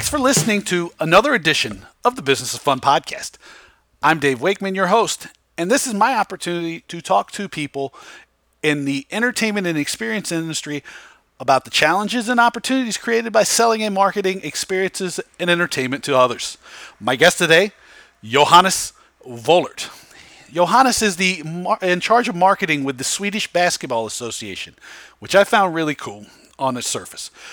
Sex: male